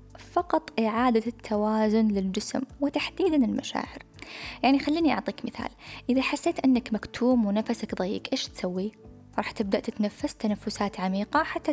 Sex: female